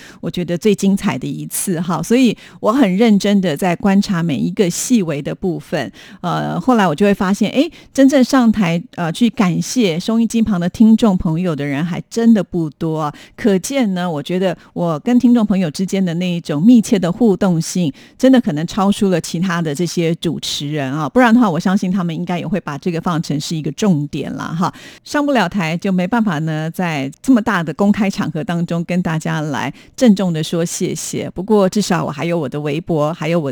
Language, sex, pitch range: Chinese, female, 165-210 Hz